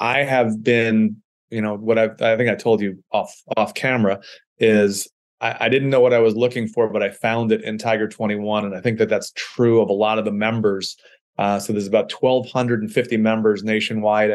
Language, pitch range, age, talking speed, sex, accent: English, 105-120 Hz, 30-49, 215 wpm, male, American